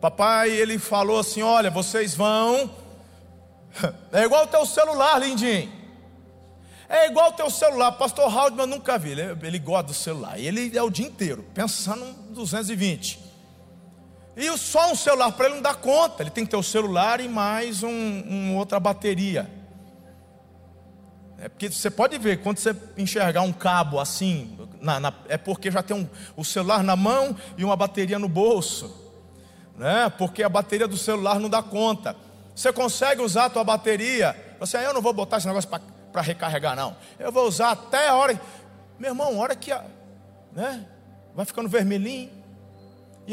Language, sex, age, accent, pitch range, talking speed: Portuguese, male, 40-59, Brazilian, 175-250 Hz, 170 wpm